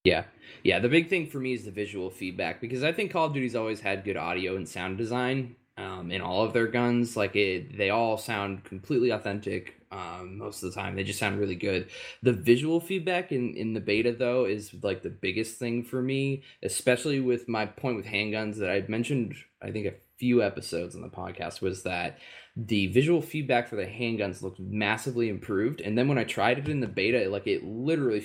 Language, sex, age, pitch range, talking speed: English, male, 20-39, 100-130 Hz, 215 wpm